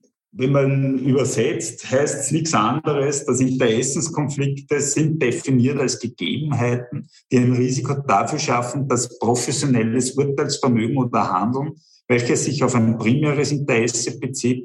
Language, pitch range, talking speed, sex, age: German, 120-145 Hz, 125 wpm, male, 50-69